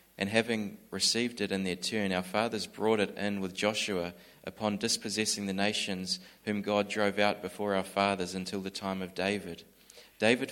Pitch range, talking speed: 95-105 Hz, 175 wpm